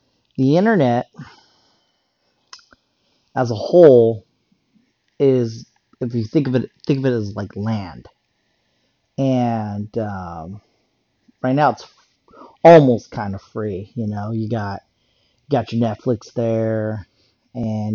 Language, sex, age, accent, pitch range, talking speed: English, male, 40-59, American, 105-130 Hz, 115 wpm